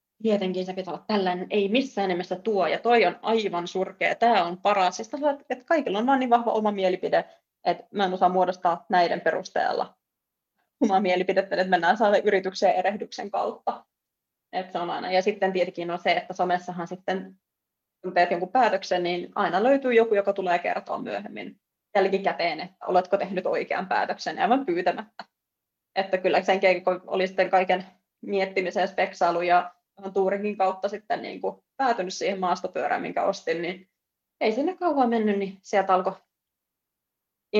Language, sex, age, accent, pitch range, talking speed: Finnish, female, 20-39, native, 185-225 Hz, 160 wpm